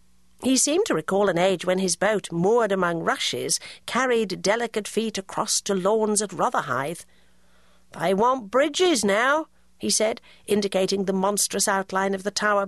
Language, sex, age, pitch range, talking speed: English, female, 50-69, 170-230 Hz, 155 wpm